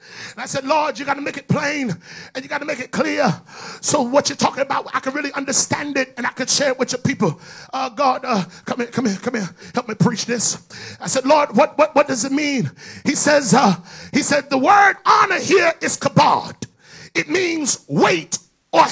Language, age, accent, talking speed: English, 40-59, American, 230 wpm